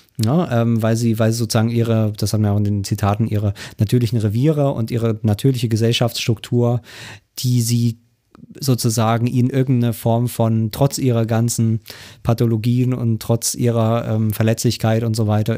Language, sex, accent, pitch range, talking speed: German, male, German, 105-120 Hz, 160 wpm